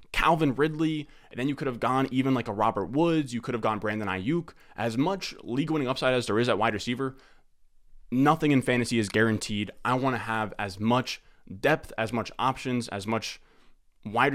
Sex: male